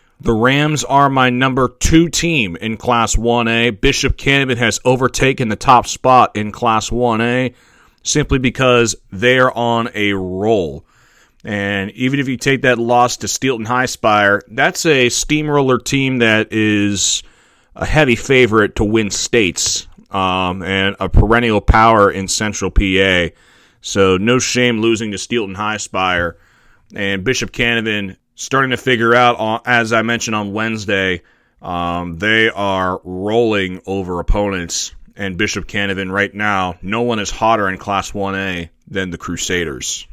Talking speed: 150 wpm